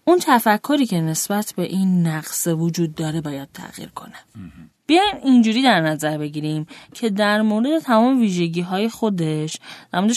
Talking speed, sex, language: 150 wpm, female, Persian